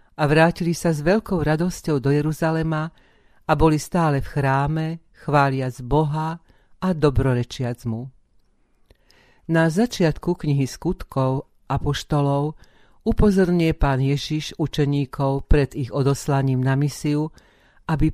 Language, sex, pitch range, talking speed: Slovak, female, 135-160 Hz, 110 wpm